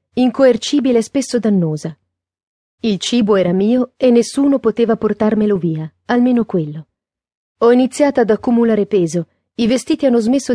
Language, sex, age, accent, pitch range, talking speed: Italian, female, 40-59, native, 175-240 Hz, 135 wpm